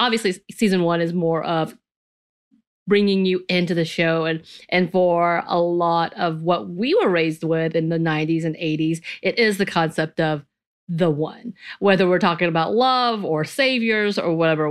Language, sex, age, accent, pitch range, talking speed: English, female, 30-49, American, 165-220 Hz, 175 wpm